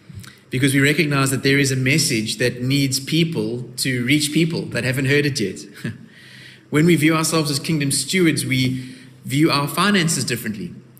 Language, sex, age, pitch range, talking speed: English, male, 30-49, 125-155 Hz, 170 wpm